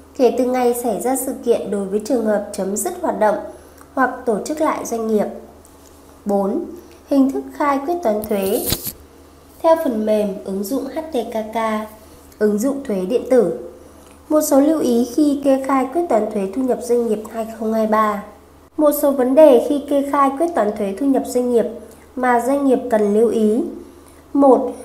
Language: Vietnamese